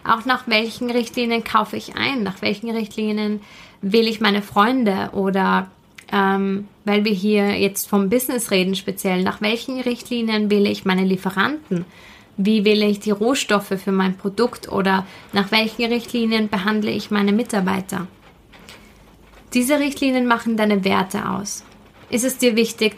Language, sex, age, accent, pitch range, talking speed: German, female, 20-39, German, 200-245 Hz, 150 wpm